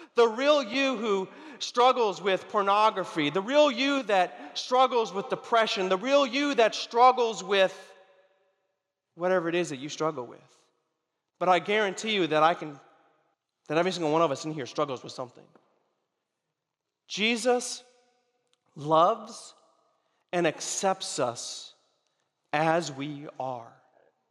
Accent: American